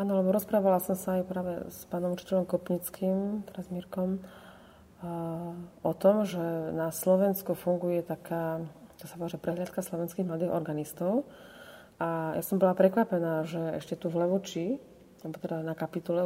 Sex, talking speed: female, 150 wpm